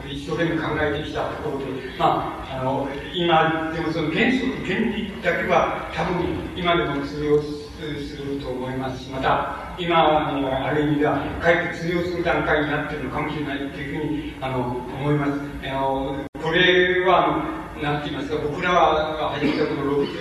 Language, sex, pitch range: Japanese, male, 135-160 Hz